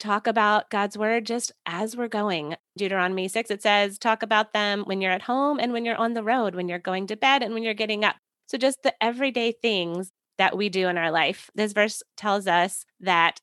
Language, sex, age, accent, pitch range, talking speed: English, female, 20-39, American, 185-235 Hz, 230 wpm